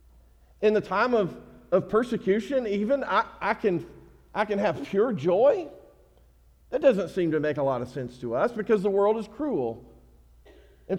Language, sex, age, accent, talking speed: English, male, 50-69, American, 170 wpm